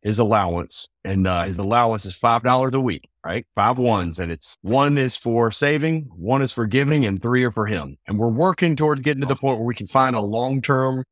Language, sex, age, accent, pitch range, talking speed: English, male, 30-49, American, 95-130 Hz, 225 wpm